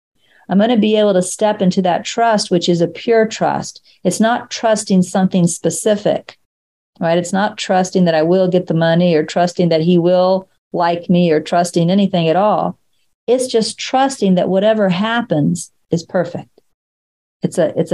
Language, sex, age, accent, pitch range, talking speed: English, female, 50-69, American, 180-225 Hz, 175 wpm